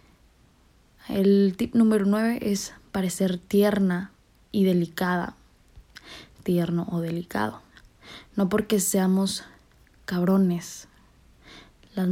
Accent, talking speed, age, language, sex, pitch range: Mexican, 85 wpm, 20-39, Spanish, female, 180-205 Hz